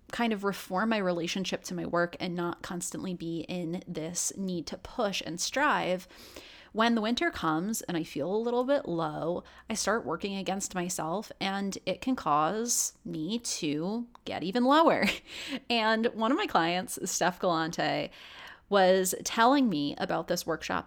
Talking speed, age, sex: 165 wpm, 30-49, female